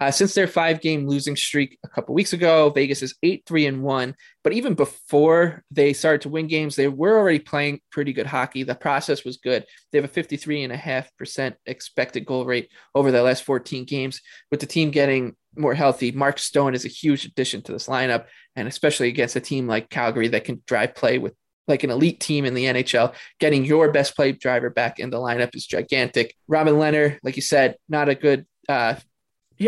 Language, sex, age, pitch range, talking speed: English, male, 20-39, 130-155 Hz, 200 wpm